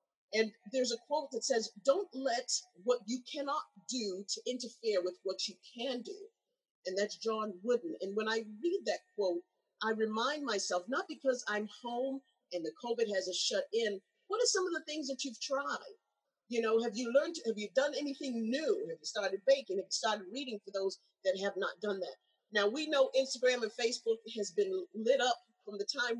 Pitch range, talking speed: 210-285 Hz, 205 wpm